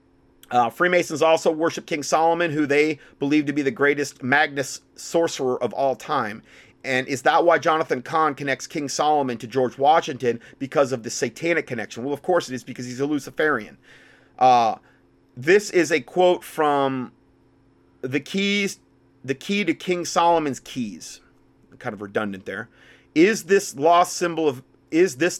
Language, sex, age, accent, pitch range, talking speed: English, male, 30-49, American, 130-175 Hz, 165 wpm